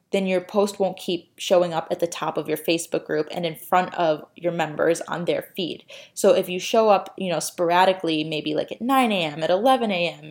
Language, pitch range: English, 170-210 Hz